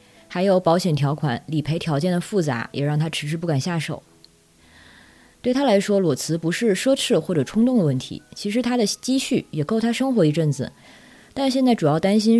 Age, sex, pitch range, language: 20-39, female, 145-195 Hz, Chinese